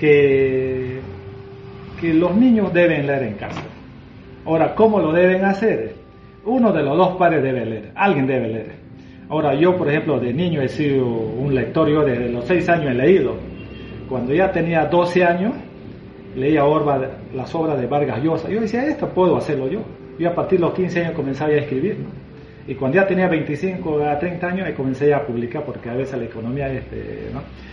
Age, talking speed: 40-59, 195 wpm